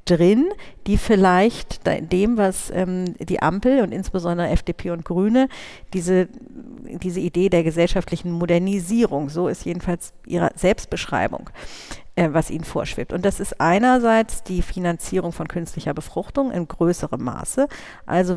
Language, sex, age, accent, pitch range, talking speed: German, female, 50-69, German, 165-195 Hz, 140 wpm